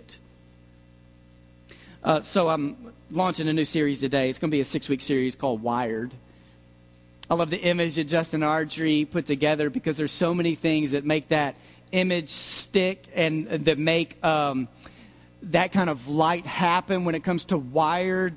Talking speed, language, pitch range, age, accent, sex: 165 wpm, English, 120-165 Hz, 40-59, American, male